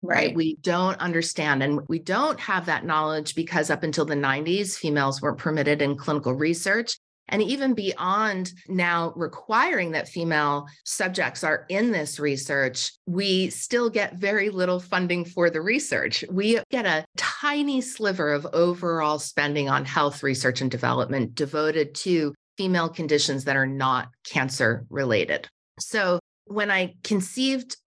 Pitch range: 150-195 Hz